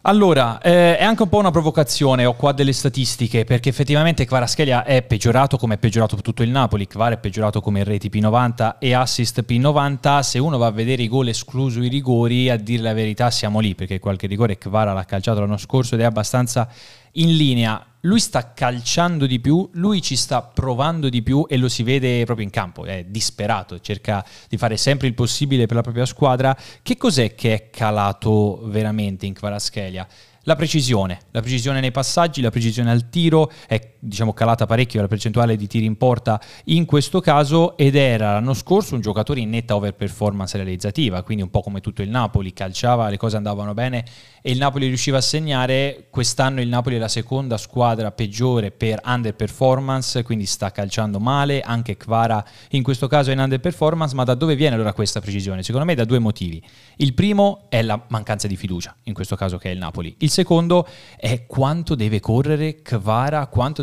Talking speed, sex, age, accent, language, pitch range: 195 wpm, male, 20-39, native, Italian, 110-135 Hz